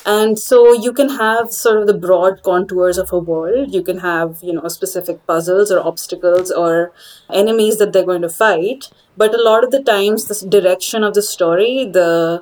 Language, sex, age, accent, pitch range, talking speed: English, female, 30-49, Indian, 175-210 Hz, 200 wpm